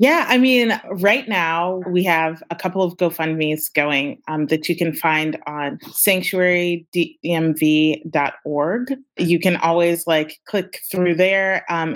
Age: 30-49